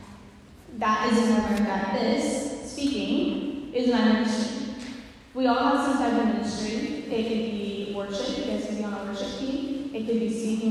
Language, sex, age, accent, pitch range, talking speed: English, female, 10-29, American, 215-245 Hz, 175 wpm